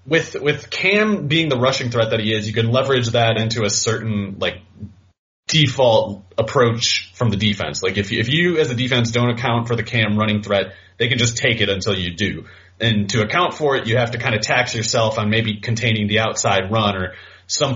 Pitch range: 105-120 Hz